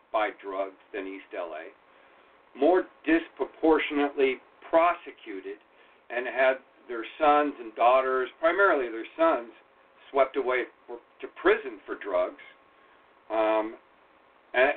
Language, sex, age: English, male, 50-69